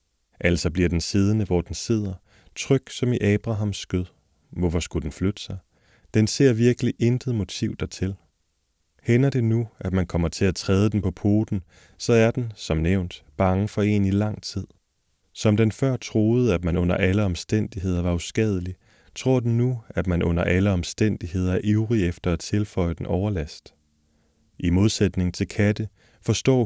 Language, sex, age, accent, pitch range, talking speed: Danish, male, 30-49, native, 90-110 Hz, 175 wpm